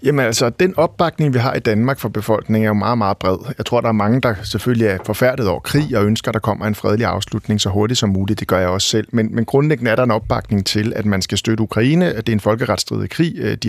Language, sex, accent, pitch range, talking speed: Danish, male, native, 110-135 Hz, 275 wpm